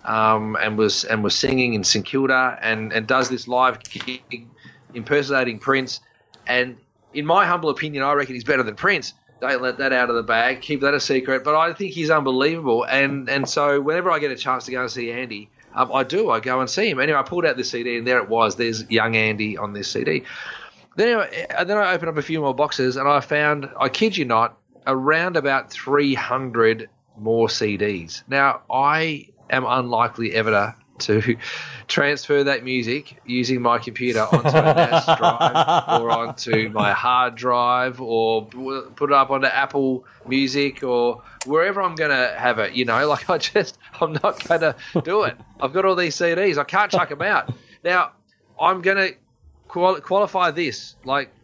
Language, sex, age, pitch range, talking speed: English, male, 30-49, 120-145 Hz, 195 wpm